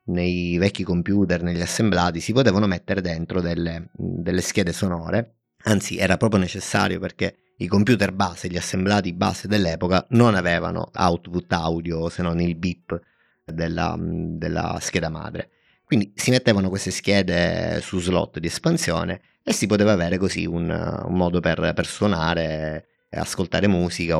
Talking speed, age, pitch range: 150 wpm, 30-49, 85-105 Hz